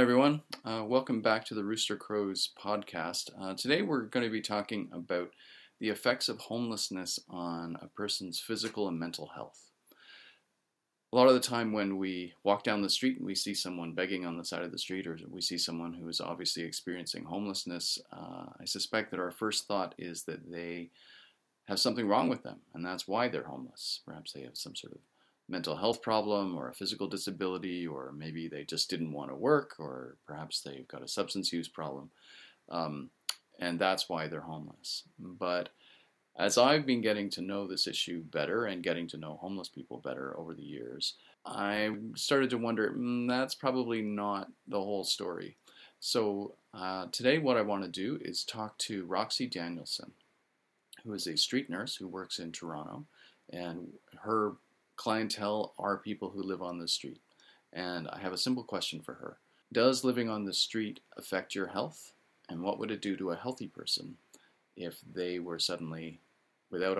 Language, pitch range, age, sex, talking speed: English, 85-110 Hz, 40-59, male, 185 wpm